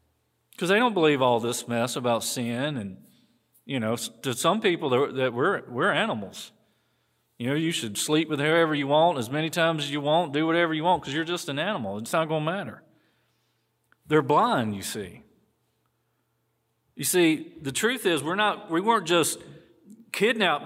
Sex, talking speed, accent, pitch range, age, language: male, 180 wpm, American, 130-180 Hz, 40-59, English